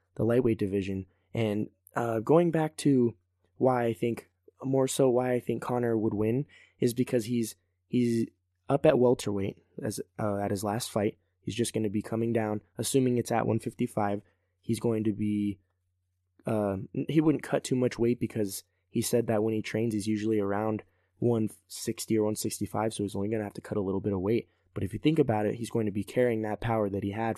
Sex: male